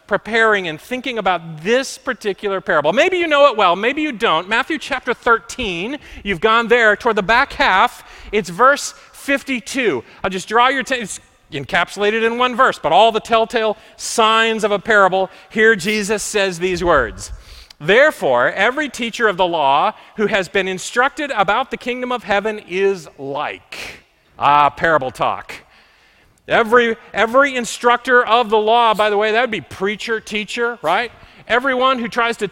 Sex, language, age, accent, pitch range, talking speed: male, English, 40-59, American, 205-260 Hz, 165 wpm